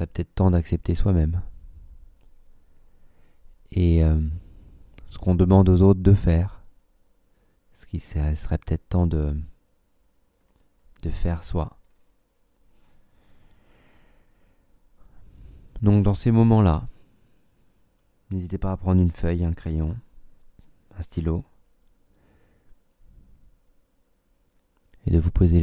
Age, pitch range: 30-49, 80-95 Hz